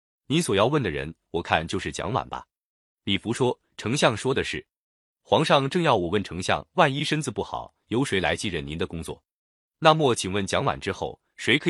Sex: male